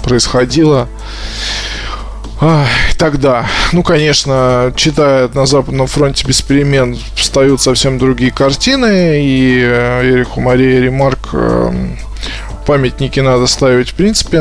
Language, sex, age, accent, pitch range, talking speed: Russian, male, 20-39, native, 125-145 Hz, 100 wpm